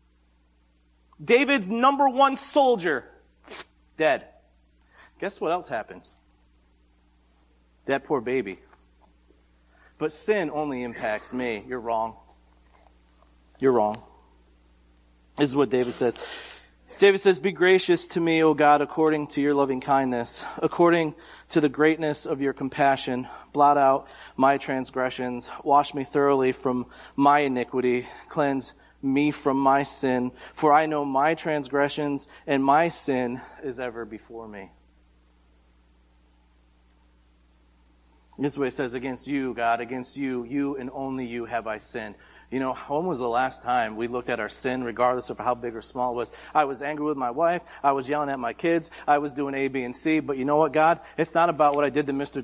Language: English